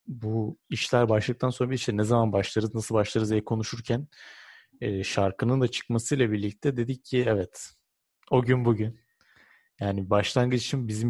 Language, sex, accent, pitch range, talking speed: Turkish, male, native, 100-120 Hz, 140 wpm